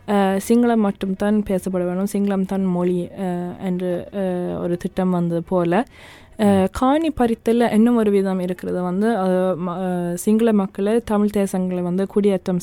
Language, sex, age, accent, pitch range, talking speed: Tamil, female, 20-39, native, 190-225 Hz, 120 wpm